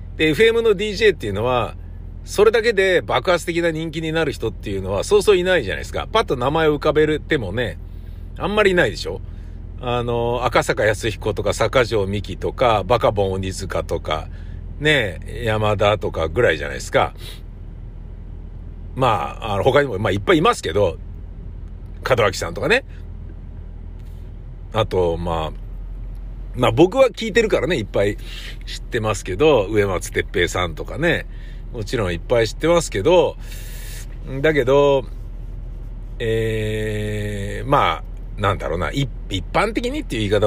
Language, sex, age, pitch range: Japanese, male, 60-79, 95-155 Hz